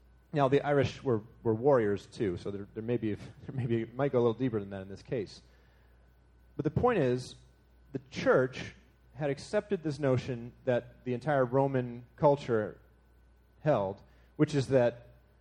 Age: 30-49